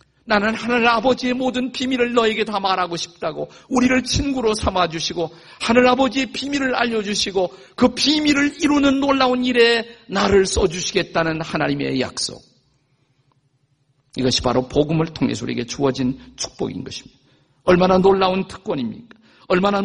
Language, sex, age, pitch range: Korean, male, 50-69, 140-225 Hz